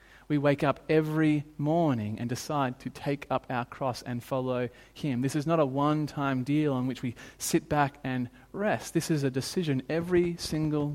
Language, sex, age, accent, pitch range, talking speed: English, male, 30-49, Australian, 130-160 Hz, 185 wpm